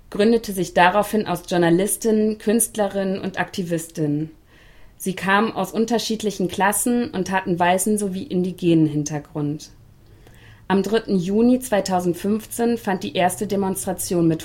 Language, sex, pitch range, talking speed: German, female, 160-205 Hz, 115 wpm